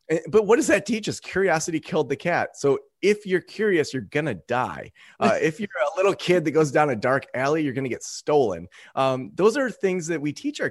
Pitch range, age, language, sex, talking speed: 125-165 Hz, 30-49, English, male, 230 wpm